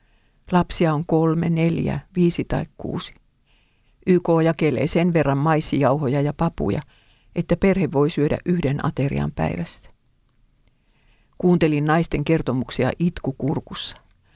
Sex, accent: female, native